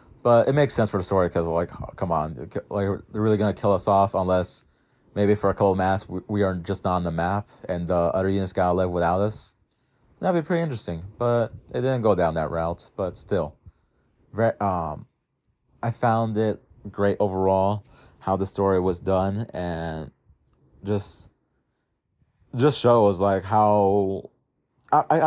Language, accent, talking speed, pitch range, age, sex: English, American, 185 wpm, 95-115 Hz, 30-49, male